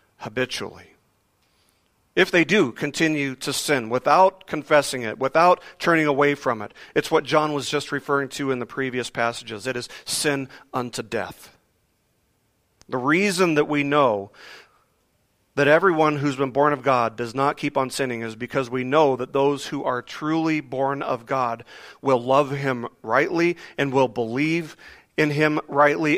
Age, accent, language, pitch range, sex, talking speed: 40-59, American, English, 130-155 Hz, male, 160 wpm